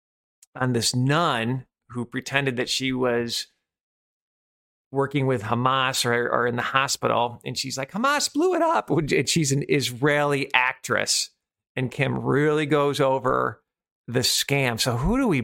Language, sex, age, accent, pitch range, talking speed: English, male, 40-59, American, 120-155 Hz, 150 wpm